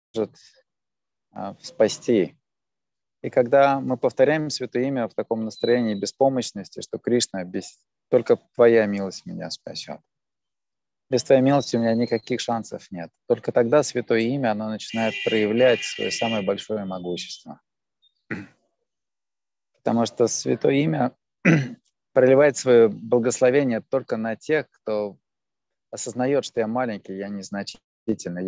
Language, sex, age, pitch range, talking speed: Russian, male, 20-39, 105-125 Hz, 115 wpm